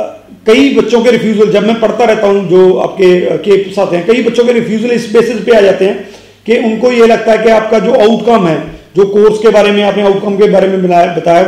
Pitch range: 190-230 Hz